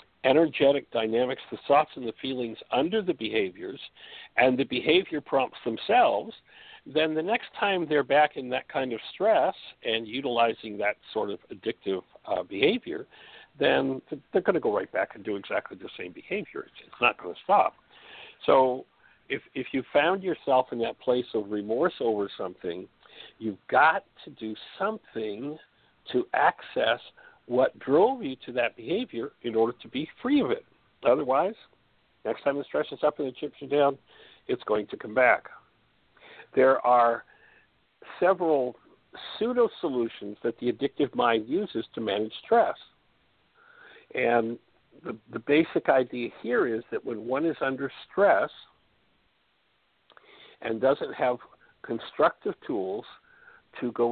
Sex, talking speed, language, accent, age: male, 150 wpm, English, American, 60-79